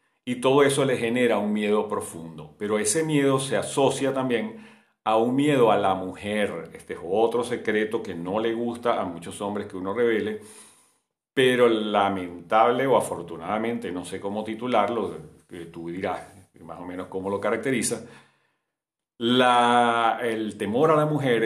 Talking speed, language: 155 wpm, Spanish